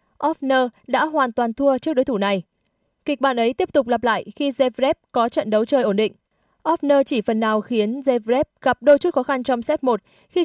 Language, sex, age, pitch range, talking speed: Vietnamese, female, 20-39, 220-275 Hz, 225 wpm